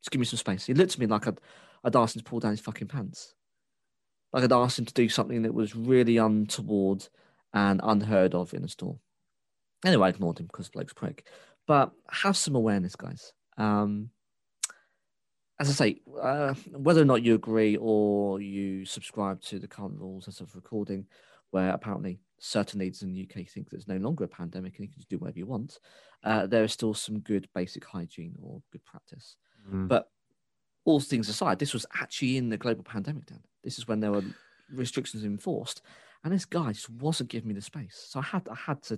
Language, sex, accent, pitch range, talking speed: English, male, British, 100-130 Hz, 210 wpm